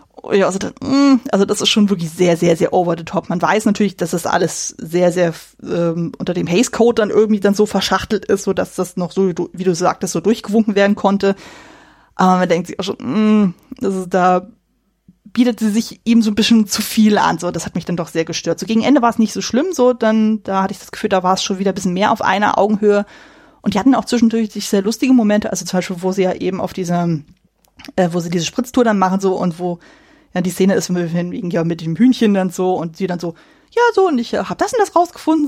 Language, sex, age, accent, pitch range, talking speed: German, female, 20-39, German, 180-230 Hz, 255 wpm